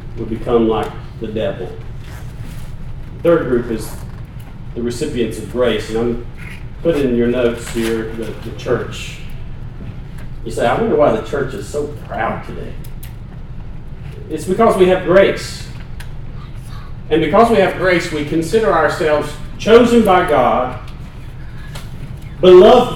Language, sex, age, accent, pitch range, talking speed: English, male, 40-59, American, 125-175 Hz, 135 wpm